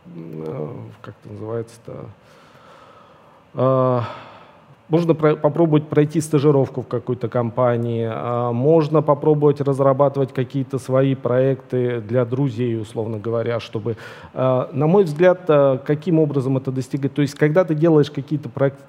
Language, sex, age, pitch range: Russian, male, 40-59, 120-150 Hz